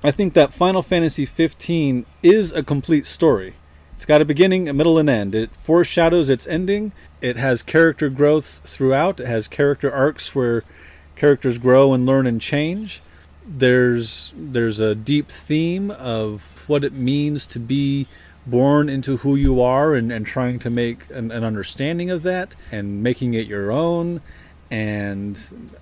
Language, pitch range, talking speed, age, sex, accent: English, 115-160 Hz, 165 wpm, 40-59, male, American